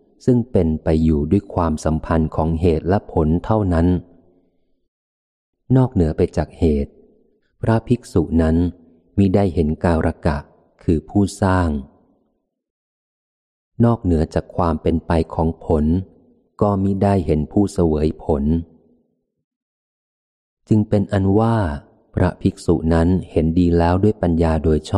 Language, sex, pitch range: Thai, male, 80-100 Hz